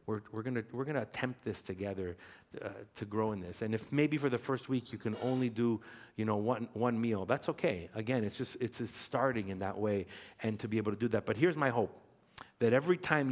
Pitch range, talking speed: 105-135 Hz, 240 wpm